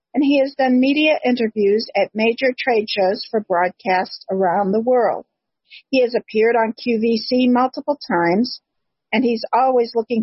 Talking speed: 155 wpm